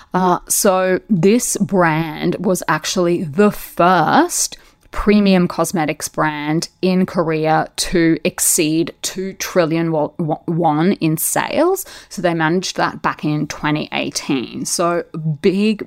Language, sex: English, female